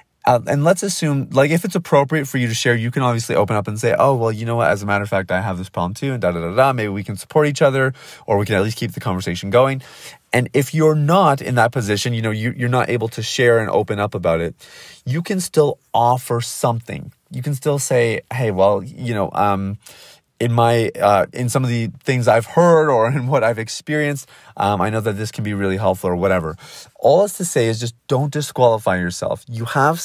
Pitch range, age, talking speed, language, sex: 110-145 Hz, 30-49, 250 wpm, English, male